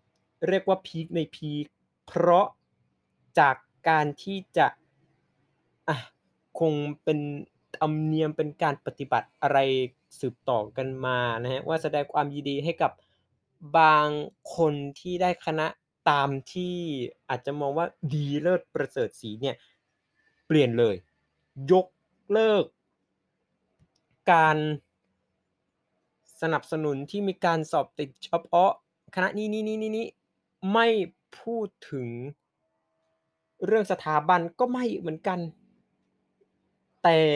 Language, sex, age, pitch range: Thai, male, 20-39, 125-170 Hz